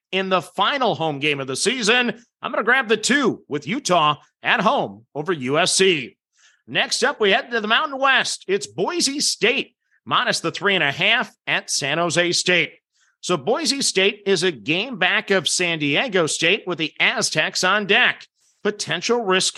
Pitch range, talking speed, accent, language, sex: 170-220 Hz, 180 wpm, American, English, male